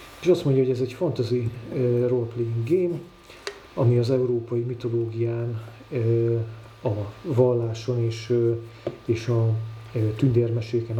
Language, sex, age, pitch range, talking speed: Hungarian, male, 40-59, 115-130 Hz, 100 wpm